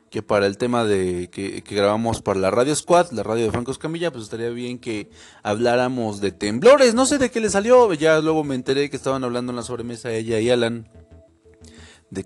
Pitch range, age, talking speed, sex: 100-130 Hz, 30-49, 220 wpm, male